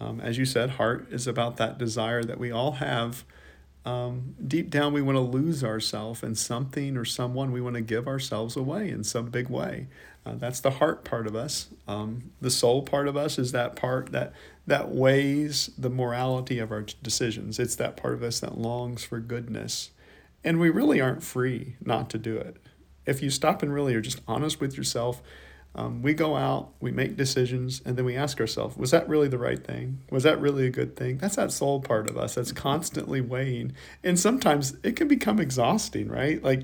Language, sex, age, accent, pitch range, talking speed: English, male, 40-59, American, 115-140 Hz, 210 wpm